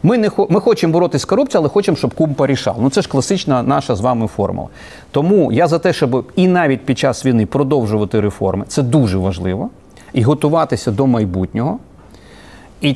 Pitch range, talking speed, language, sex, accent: 115-155 Hz, 185 wpm, Ukrainian, male, native